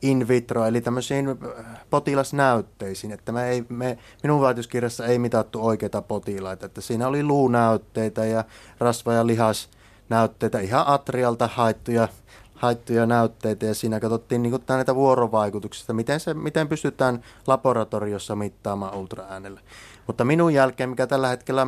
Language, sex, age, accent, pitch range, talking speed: Finnish, male, 20-39, native, 105-125 Hz, 130 wpm